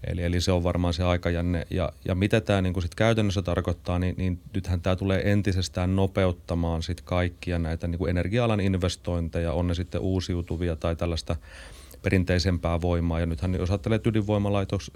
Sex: male